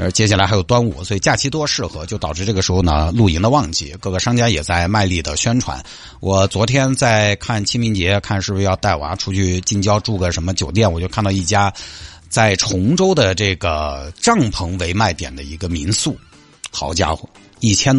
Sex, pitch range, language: male, 90-125 Hz, Chinese